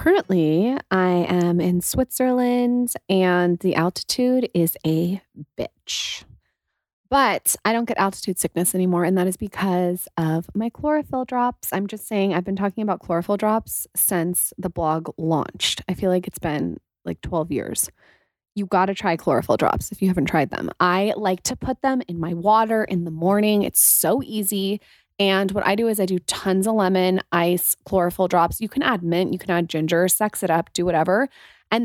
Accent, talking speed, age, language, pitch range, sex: American, 185 wpm, 20-39, English, 175-220 Hz, female